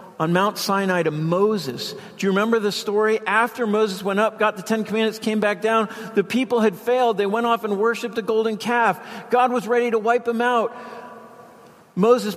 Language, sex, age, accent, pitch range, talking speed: English, male, 50-69, American, 140-215 Hz, 200 wpm